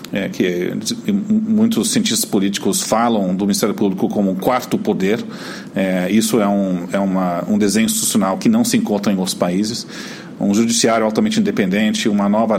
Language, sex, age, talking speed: Portuguese, male, 40-59, 150 wpm